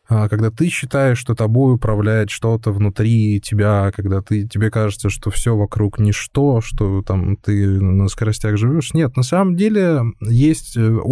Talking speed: 150 wpm